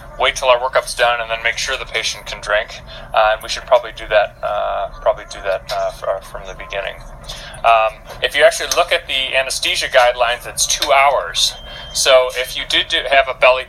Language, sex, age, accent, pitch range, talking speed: English, male, 30-49, American, 110-140 Hz, 205 wpm